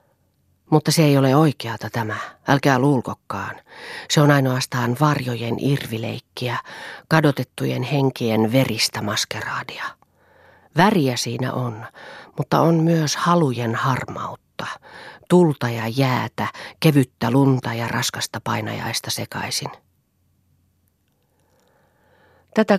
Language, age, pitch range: Finnish, 40-59, 115-145 Hz